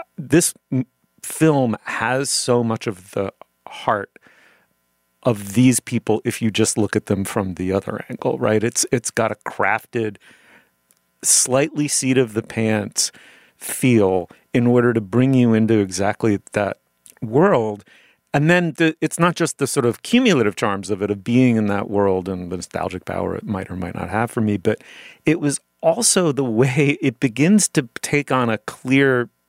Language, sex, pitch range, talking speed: English, male, 105-145 Hz, 165 wpm